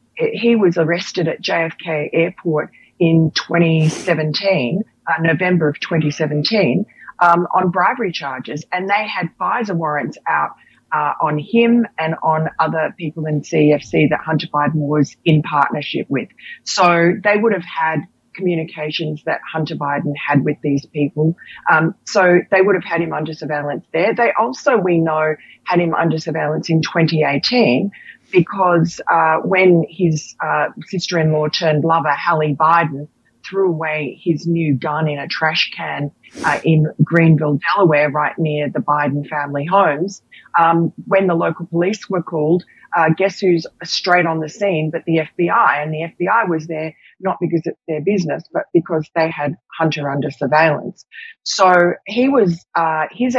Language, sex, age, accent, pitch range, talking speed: English, female, 40-59, Australian, 155-180 Hz, 160 wpm